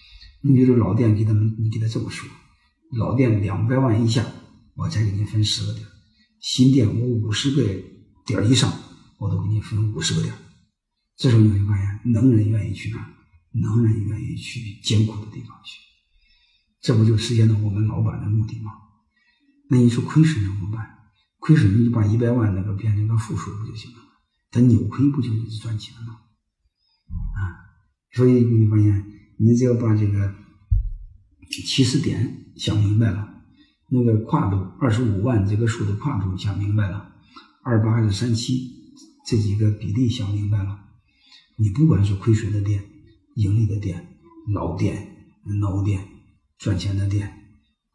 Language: Chinese